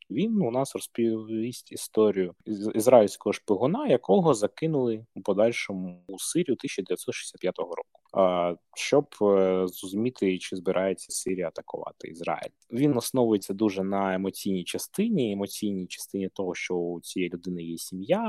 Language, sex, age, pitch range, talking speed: Ukrainian, male, 20-39, 90-115 Hz, 130 wpm